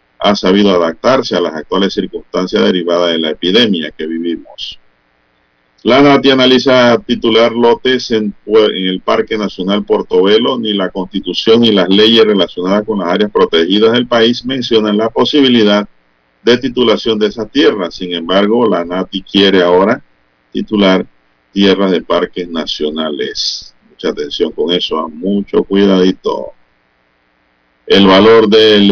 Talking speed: 135 wpm